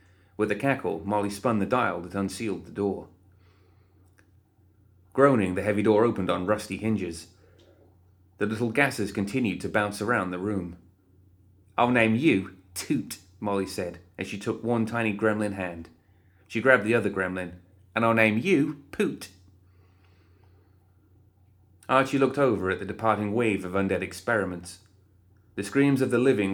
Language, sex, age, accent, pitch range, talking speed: English, male, 30-49, British, 95-110 Hz, 150 wpm